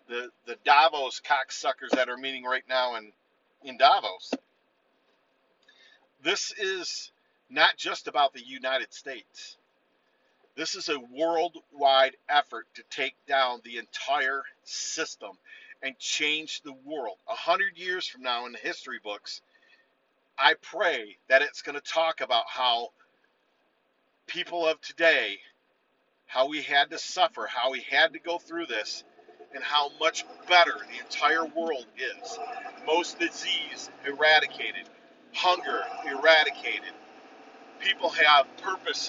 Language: English